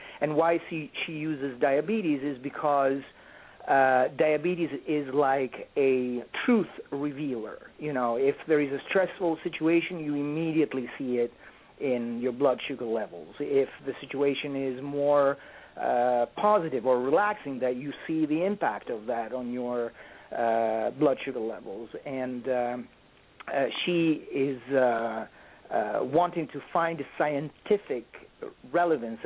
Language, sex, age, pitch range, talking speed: English, male, 40-59, 125-155 Hz, 135 wpm